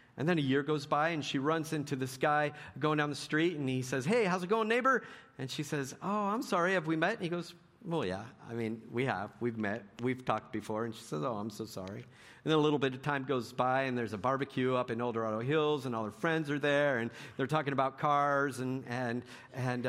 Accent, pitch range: American, 125-175 Hz